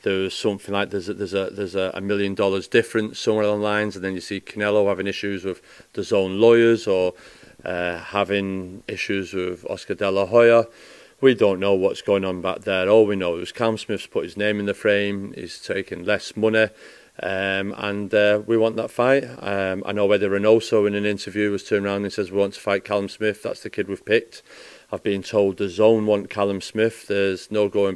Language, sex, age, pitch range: English, male, 30-49, 100-110 Hz